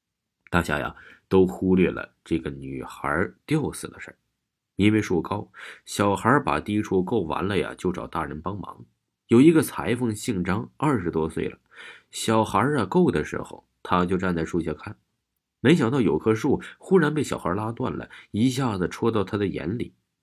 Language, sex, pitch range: Chinese, male, 85-120 Hz